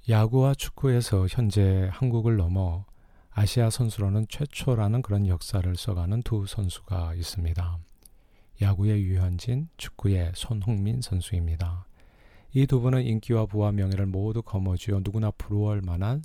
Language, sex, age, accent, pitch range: Korean, male, 40-59, native, 90-115 Hz